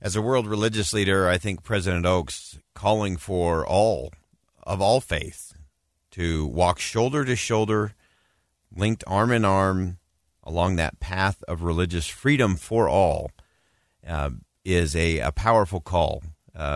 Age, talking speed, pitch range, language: 50-69, 140 wpm, 85-110 Hz, English